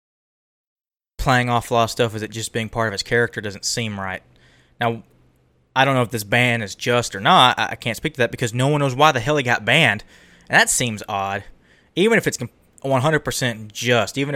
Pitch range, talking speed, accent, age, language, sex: 105-135 Hz, 215 wpm, American, 20-39, English, male